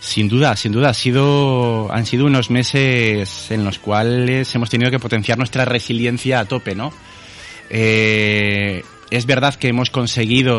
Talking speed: 160 wpm